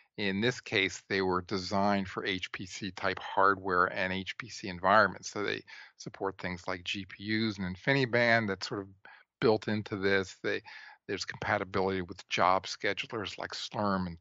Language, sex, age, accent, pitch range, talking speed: English, male, 40-59, American, 95-105 Hz, 150 wpm